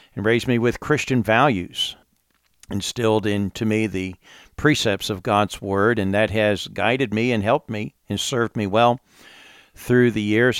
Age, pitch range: 50-69, 95-110 Hz